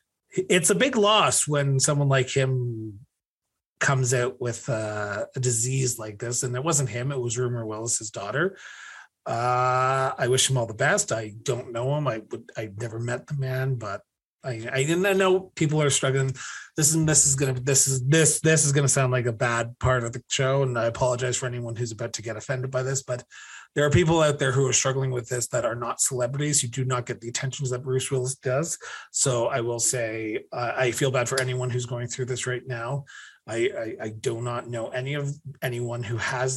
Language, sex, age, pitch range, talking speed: English, male, 30-49, 120-140 Hz, 220 wpm